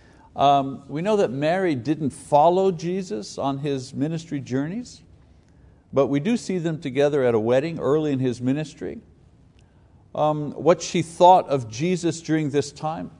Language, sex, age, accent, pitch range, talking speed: English, male, 60-79, American, 120-155 Hz, 155 wpm